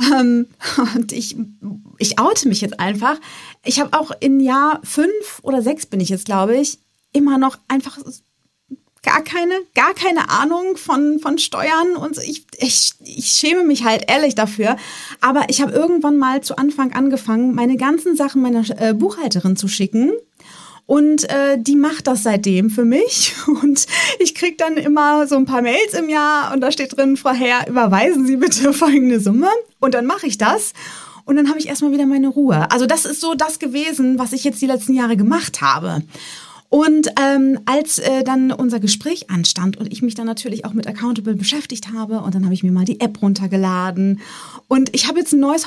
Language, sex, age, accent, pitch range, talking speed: German, female, 30-49, German, 230-300 Hz, 190 wpm